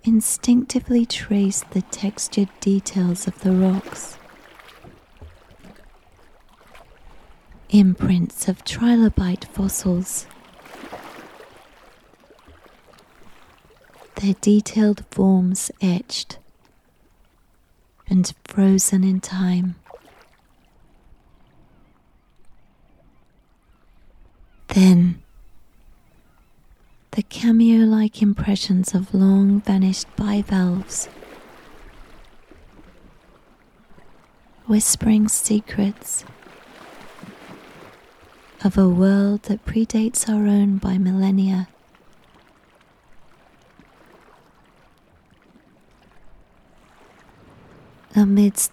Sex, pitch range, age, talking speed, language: female, 185-210 Hz, 30-49, 50 wpm, English